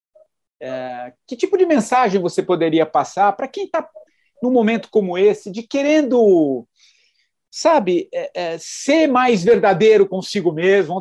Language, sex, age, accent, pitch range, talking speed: English, male, 50-69, Brazilian, 180-260 Hz, 135 wpm